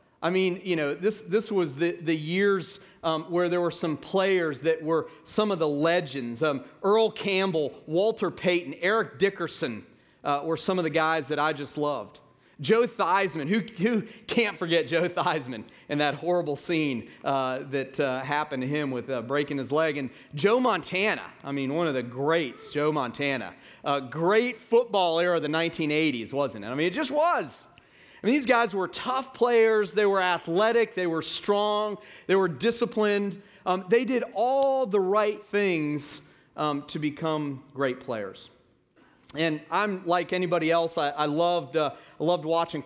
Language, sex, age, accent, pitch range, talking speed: English, male, 40-59, American, 145-195 Hz, 180 wpm